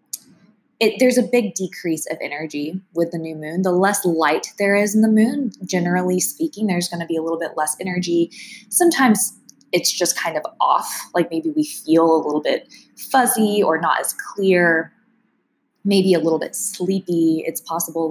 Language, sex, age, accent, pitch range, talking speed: English, female, 20-39, American, 165-215 Hz, 180 wpm